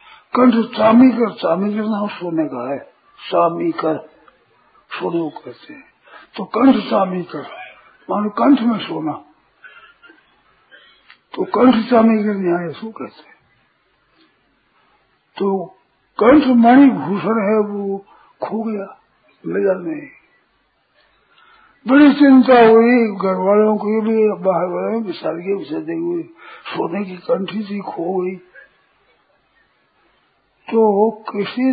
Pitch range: 200-260 Hz